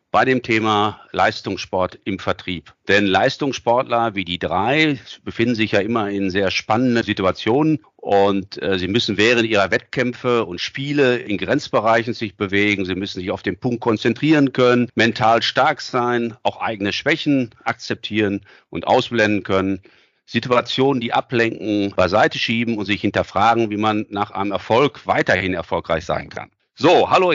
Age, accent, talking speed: 50-69, German, 150 wpm